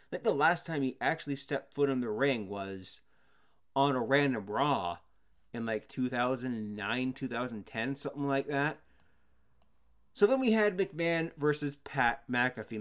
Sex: male